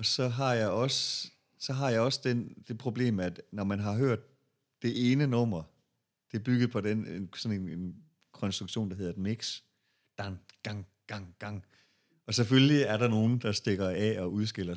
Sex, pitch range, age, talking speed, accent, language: male, 100-125 Hz, 40-59, 190 wpm, native, Danish